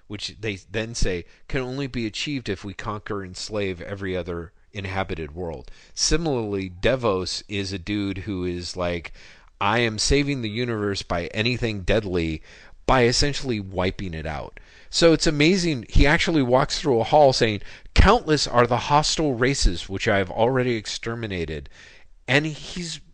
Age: 40-59